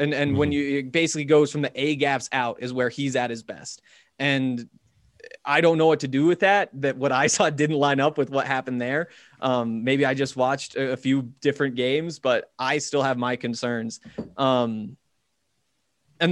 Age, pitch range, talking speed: 20-39, 130-155 Hz, 200 wpm